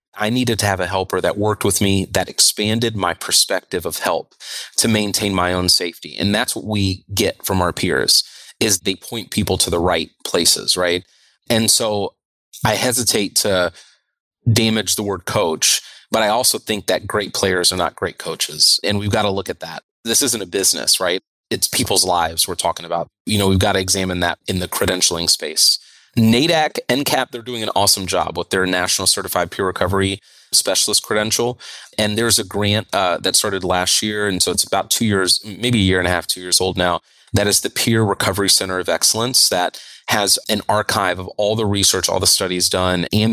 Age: 30-49